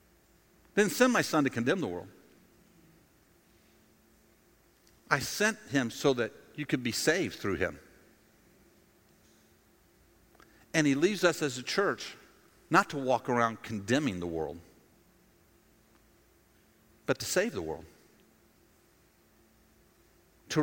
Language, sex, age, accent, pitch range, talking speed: English, male, 50-69, American, 115-170 Hz, 115 wpm